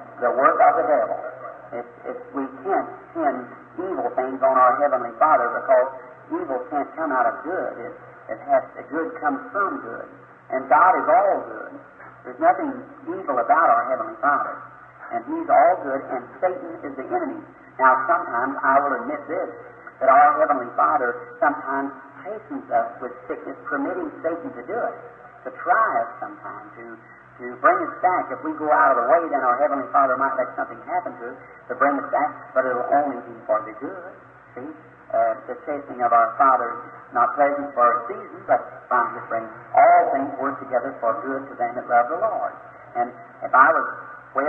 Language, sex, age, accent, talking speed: English, male, 50-69, American, 195 wpm